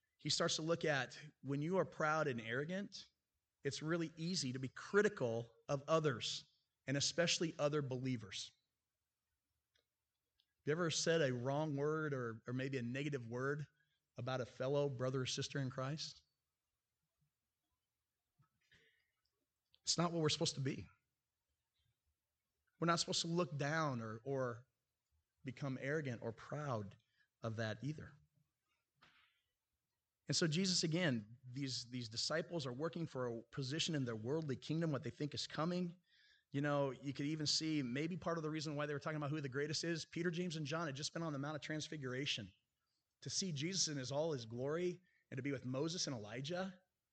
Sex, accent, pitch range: male, American, 130-160 Hz